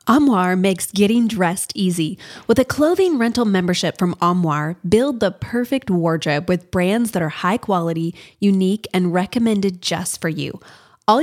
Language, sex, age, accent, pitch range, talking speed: English, female, 20-39, American, 180-240 Hz, 155 wpm